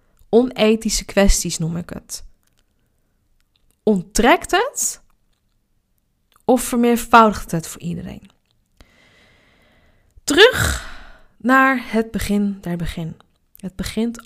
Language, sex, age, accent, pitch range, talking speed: Dutch, female, 20-39, Dutch, 175-210 Hz, 85 wpm